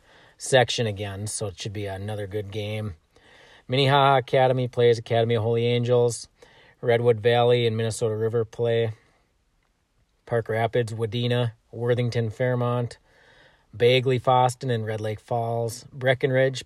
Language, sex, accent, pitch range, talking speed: English, male, American, 115-130 Hz, 125 wpm